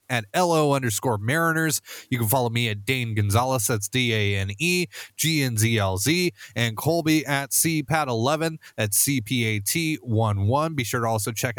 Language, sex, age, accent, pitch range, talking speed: English, male, 30-49, American, 120-170 Hz, 135 wpm